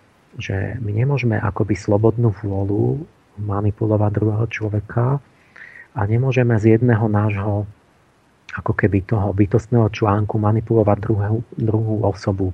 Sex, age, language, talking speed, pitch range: male, 40-59, Slovak, 110 wpm, 105-120 Hz